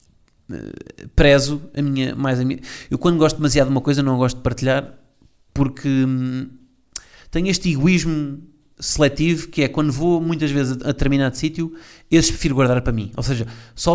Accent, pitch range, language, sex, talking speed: Portuguese, 120-150 Hz, Portuguese, male, 175 wpm